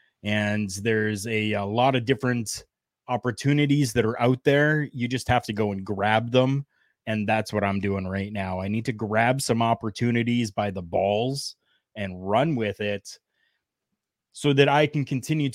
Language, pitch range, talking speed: English, 105-130 Hz, 175 wpm